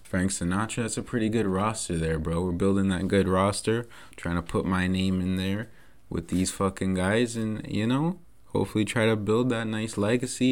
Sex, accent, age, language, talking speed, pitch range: male, American, 20-39, English, 200 wpm, 90-105 Hz